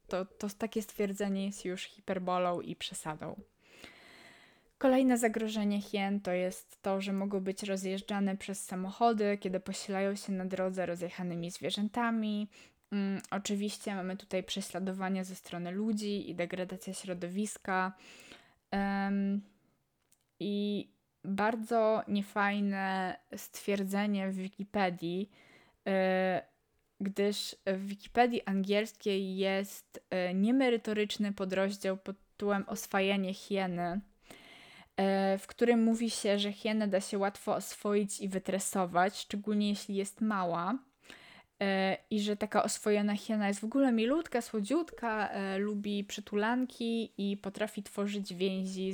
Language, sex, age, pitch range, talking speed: Polish, female, 20-39, 190-210 Hz, 105 wpm